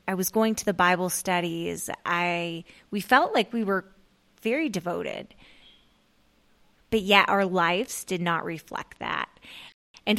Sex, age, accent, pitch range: female, 20-39, American, 175-210 Hz